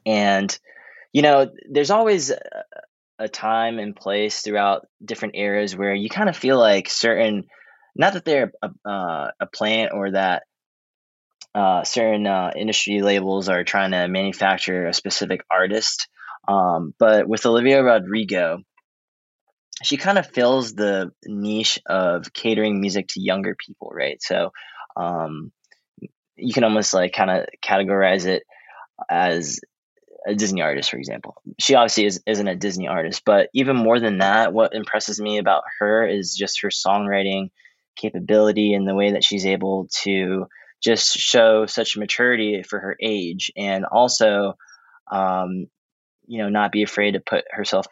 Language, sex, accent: English, male, American